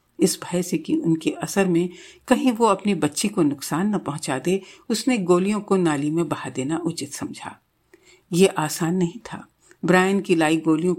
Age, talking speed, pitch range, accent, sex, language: 60-79, 175 wpm, 160-215 Hz, native, female, Hindi